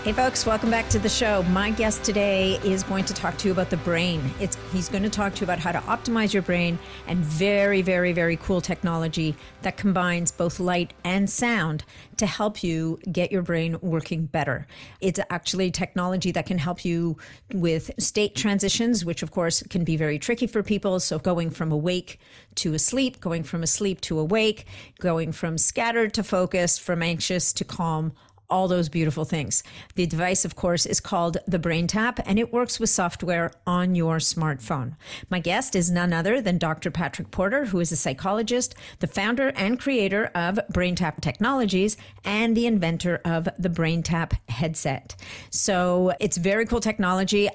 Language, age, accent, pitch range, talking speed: English, 50-69, American, 170-200 Hz, 180 wpm